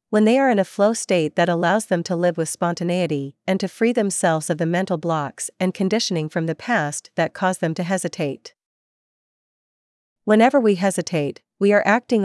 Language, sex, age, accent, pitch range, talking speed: English, female, 40-59, American, 160-205 Hz, 185 wpm